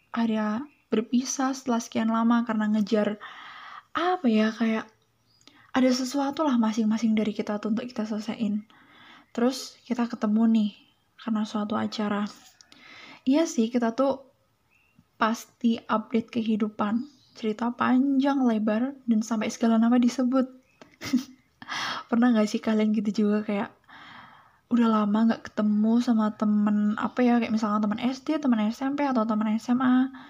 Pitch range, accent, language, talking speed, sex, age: 215-255 Hz, native, Indonesian, 130 wpm, female, 10-29